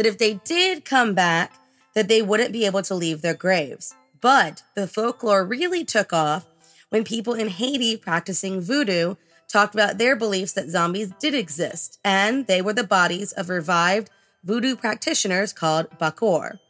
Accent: American